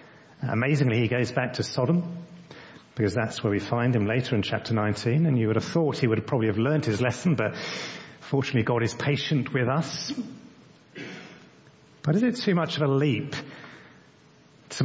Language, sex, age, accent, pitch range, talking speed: English, male, 40-59, British, 115-155 Hz, 180 wpm